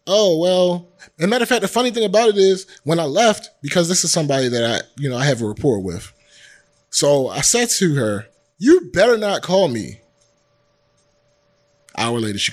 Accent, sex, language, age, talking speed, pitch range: American, male, English, 30-49, 200 wpm, 130-190 Hz